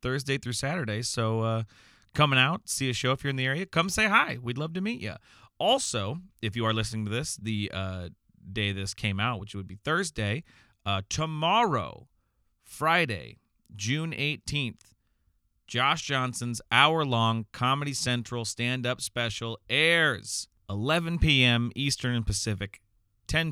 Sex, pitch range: male, 100-130 Hz